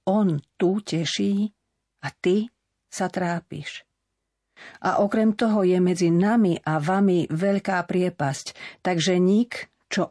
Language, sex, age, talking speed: Slovak, female, 50-69, 120 wpm